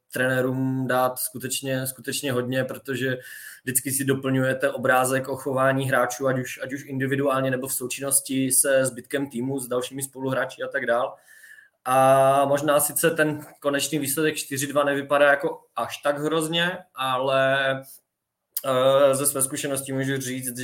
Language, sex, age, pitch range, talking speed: Czech, male, 20-39, 125-135 Hz, 135 wpm